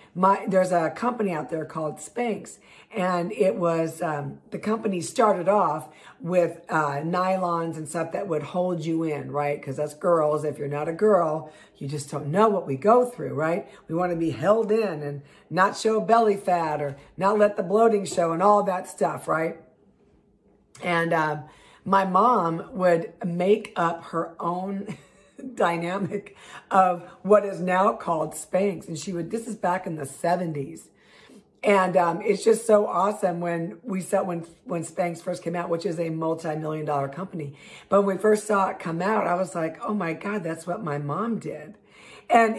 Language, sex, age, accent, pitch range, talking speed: English, female, 50-69, American, 160-200 Hz, 185 wpm